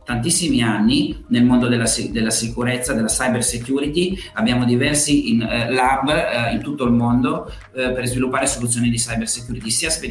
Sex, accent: male, native